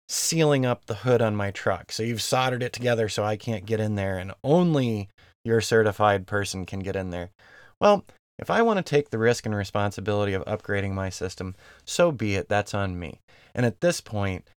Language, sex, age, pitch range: English, male, 30-49, 100-140 Hz